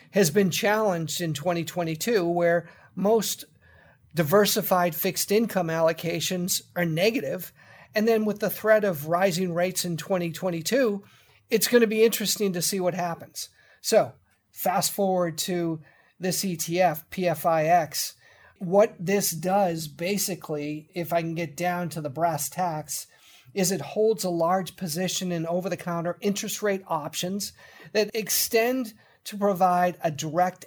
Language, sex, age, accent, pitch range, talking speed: English, male, 40-59, American, 165-205 Hz, 135 wpm